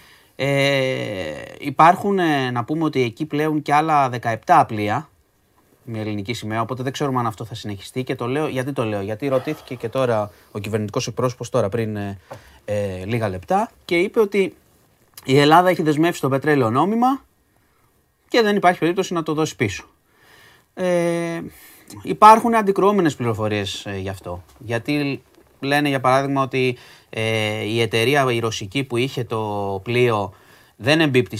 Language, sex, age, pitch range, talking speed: Greek, male, 30-49, 110-155 Hz, 145 wpm